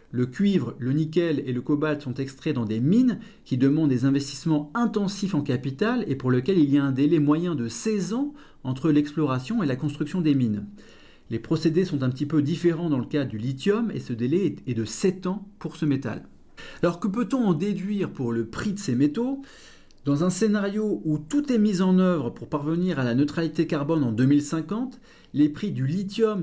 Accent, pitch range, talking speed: French, 140-190 Hz, 210 wpm